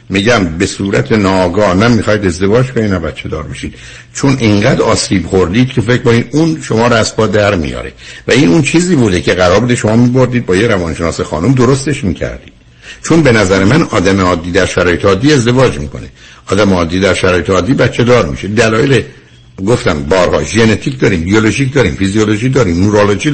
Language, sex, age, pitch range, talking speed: Persian, male, 60-79, 95-145 Hz, 175 wpm